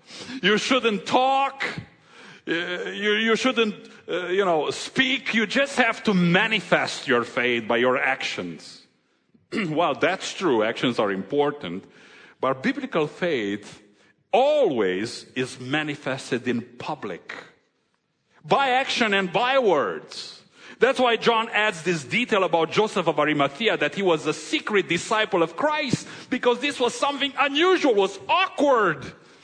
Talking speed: 135 wpm